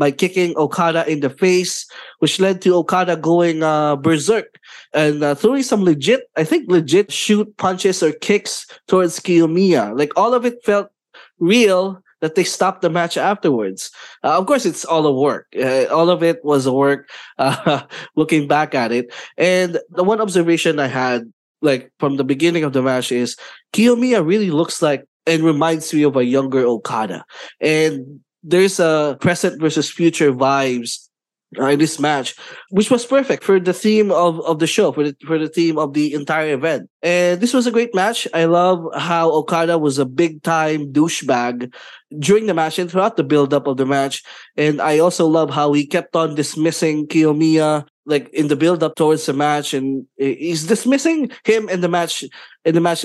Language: English